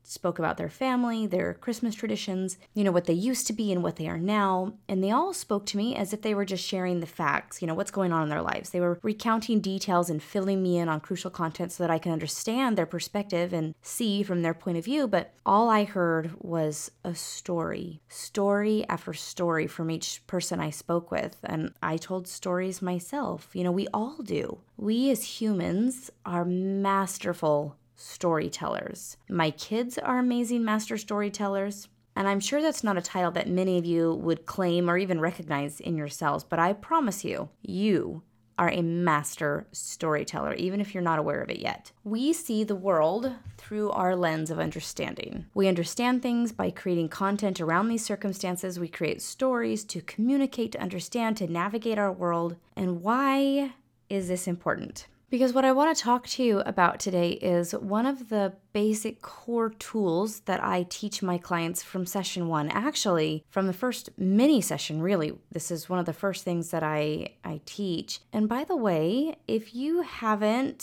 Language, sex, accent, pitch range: English, female, American, 170-215 Hz